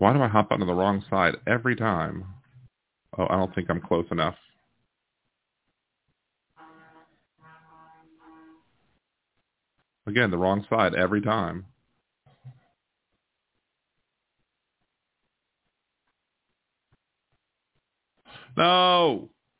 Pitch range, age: 95-130 Hz, 40-59